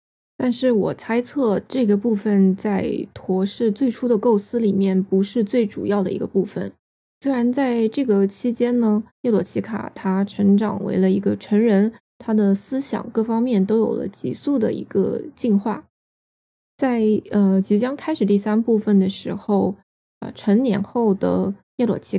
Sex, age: female, 20-39